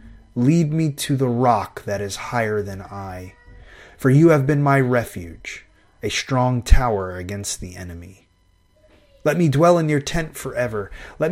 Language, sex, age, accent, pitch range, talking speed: English, male, 30-49, American, 100-145 Hz, 160 wpm